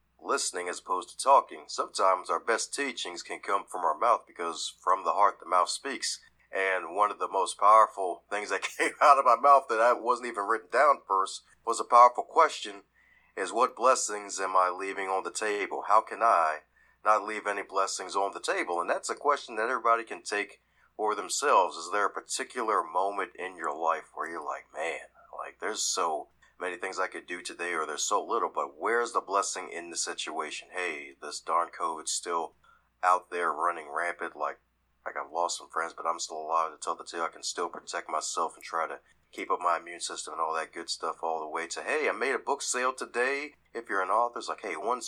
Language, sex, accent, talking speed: English, male, American, 220 wpm